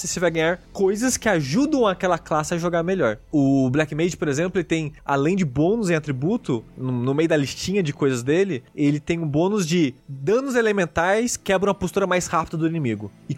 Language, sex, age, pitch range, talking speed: Portuguese, male, 20-39, 140-185 Hz, 205 wpm